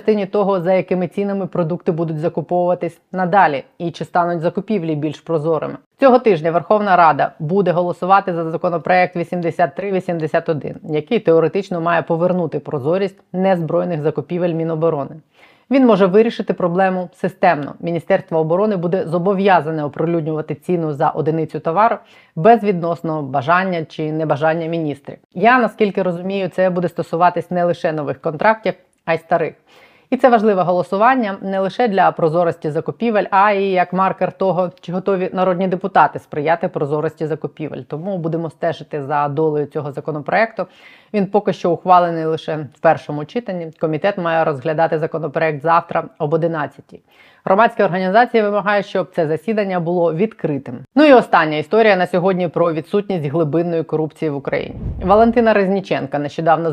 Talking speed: 140 wpm